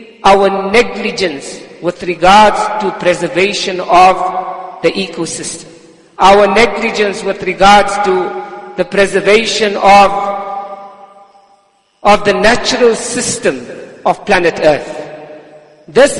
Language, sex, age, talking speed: English, male, 50-69, 95 wpm